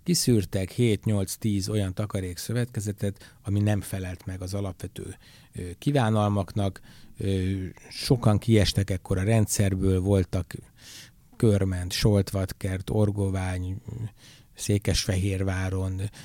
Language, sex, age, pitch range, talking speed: Hungarian, male, 60-79, 95-115 Hz, 80 wpm